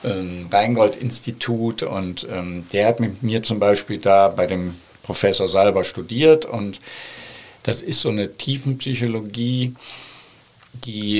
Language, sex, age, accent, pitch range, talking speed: German, male, 50-69, German, 100-115 Hz, 120 wpm